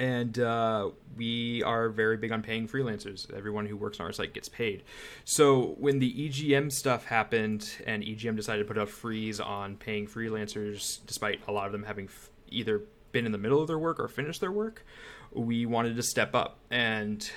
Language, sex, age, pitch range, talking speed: English, male, 20-39, 110-140 Hz, 195 wpm